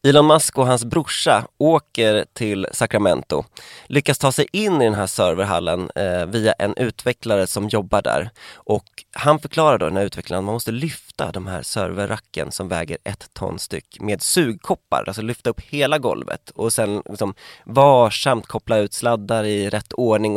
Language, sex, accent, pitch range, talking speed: Swedish, male, native, 105-140 Hz, 170 wpm